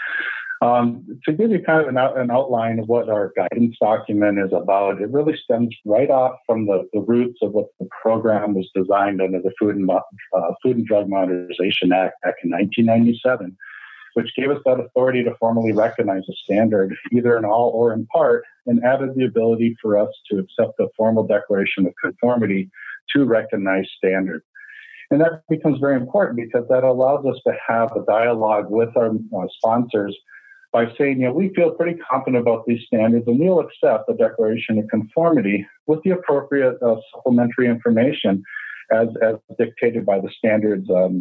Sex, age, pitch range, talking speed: male, 50-69, 105-140 Hz, 180 wpm